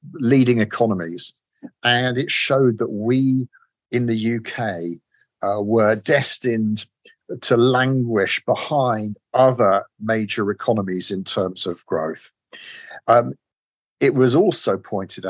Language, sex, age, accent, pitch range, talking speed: English, male, 50-69, British, 105-125 Hz, 110 wpm